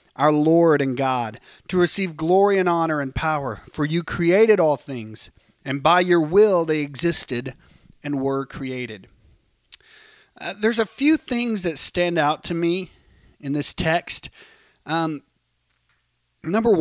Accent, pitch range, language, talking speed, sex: American, 135-180 Hz, English, 145 wpm, male